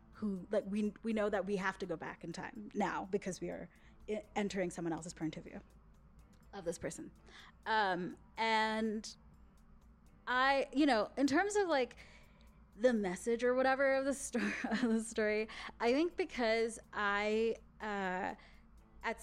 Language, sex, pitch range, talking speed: English, female, 185-225 Hz, 160 wpm